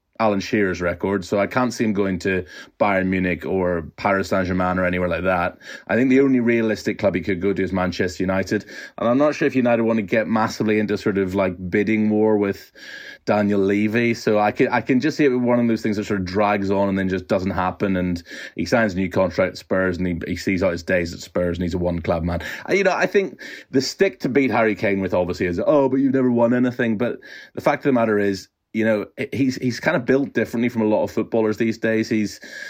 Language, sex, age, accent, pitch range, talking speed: English, male, 30-49, British, 95-115 Hz, 255 wpm